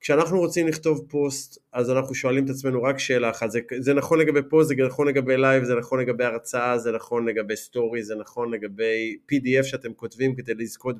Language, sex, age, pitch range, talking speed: Hebrew, male, 30-49, 120-150 Hz, 200 wpm